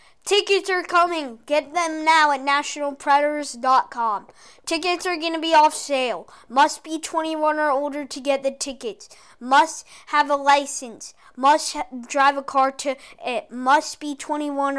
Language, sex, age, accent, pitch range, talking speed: English, female, 20-39, American, 265-310 Hz, 150 wpm